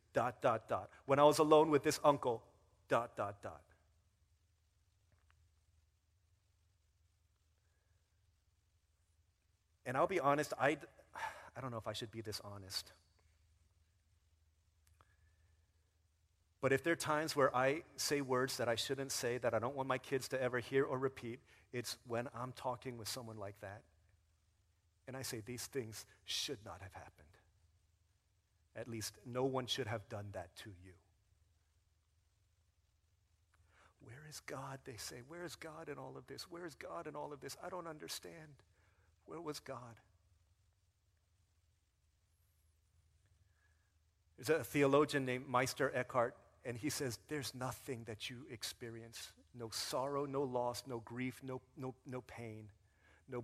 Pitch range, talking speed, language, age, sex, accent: 90-130 Hz, 145 wpm, English, 40-59, male, American